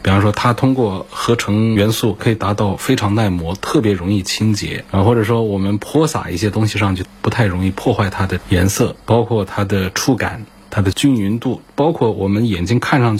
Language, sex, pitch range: Chinese, male, 95-115 Hz